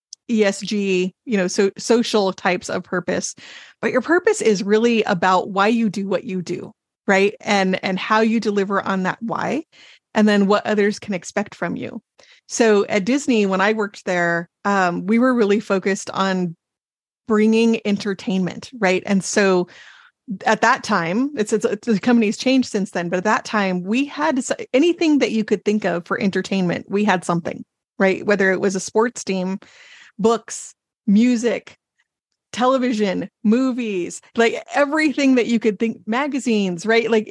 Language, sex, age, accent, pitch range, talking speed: English, female, 30-49, American, 190-230 Hz, 165 wpm